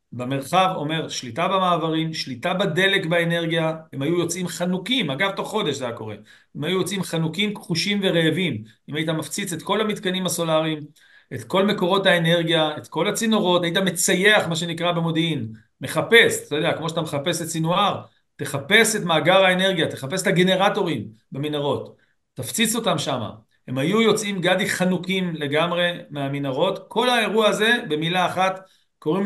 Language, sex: Hebrew, male